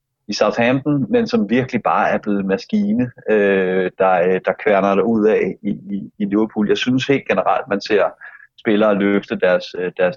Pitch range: 100-135 Hz